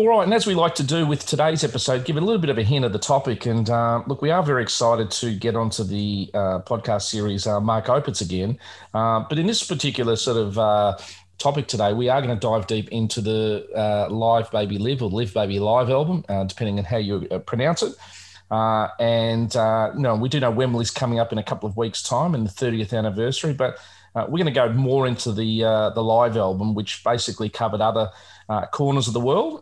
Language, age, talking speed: English, 30-49, 235 wpm